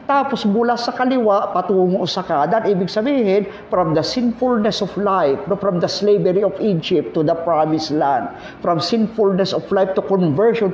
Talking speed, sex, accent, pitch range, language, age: 170 wpm, male, native, 160-210 Hz, Filipino, 50-69